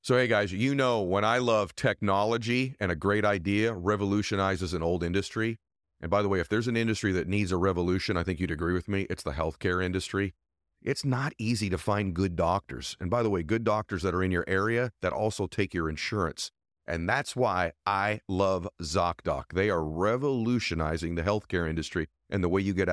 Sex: male